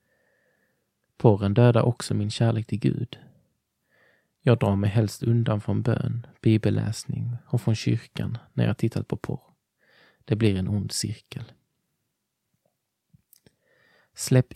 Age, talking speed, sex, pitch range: 20-39, 120 wpm, male, 105-125 Hz